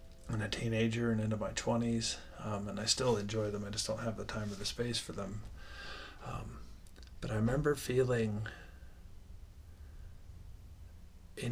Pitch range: 90-115 Hz